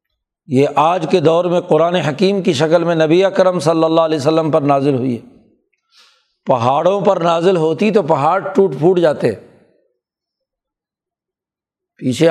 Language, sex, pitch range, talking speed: Urdu, male, 155-195 Hz, 145 wpm